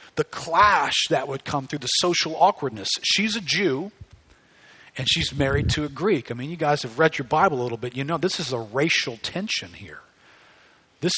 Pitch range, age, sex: 135-180 Hz, 40-59, male